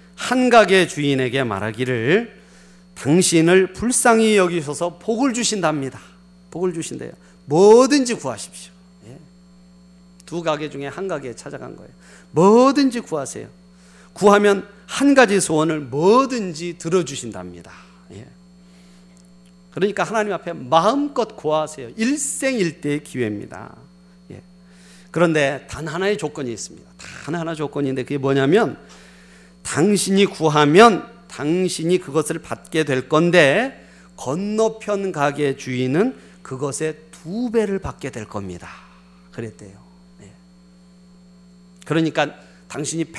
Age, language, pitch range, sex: 40-59, Korean, 110-180 Hz, male